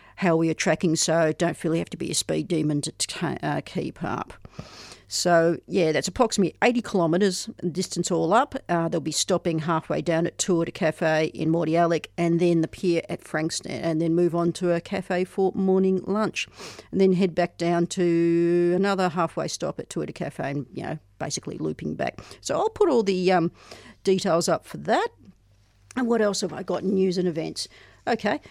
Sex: female